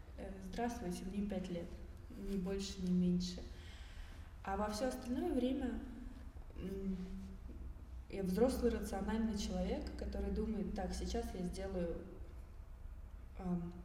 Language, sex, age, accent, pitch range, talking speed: Russian, female, 20-39, native, 170-230 Hz, 105 wpm